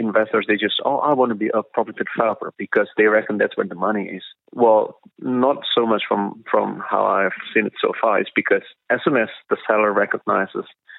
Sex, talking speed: male, 215 wpm